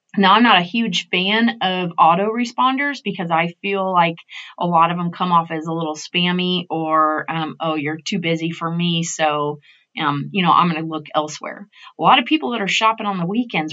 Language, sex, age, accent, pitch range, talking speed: English, female, 30-49, American, 170-215 Hz, 220 wpm